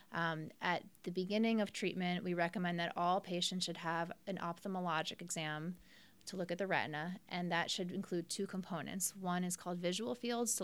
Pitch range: 170-200 Hz